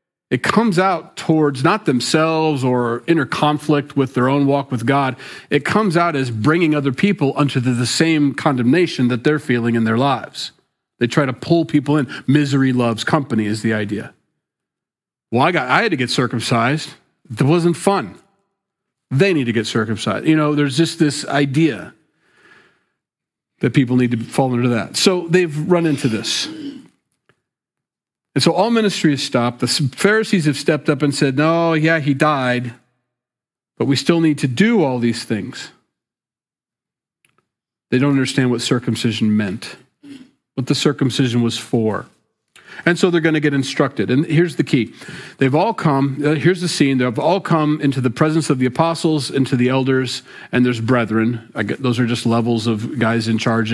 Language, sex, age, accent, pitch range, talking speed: English, male, 40-59, American, 120-160 Hz, 175 wpm